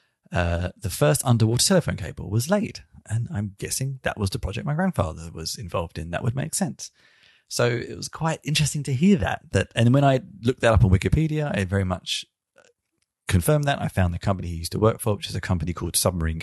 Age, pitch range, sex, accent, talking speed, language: 30-49, 90-120 Hz, male, British, 225 wpm, English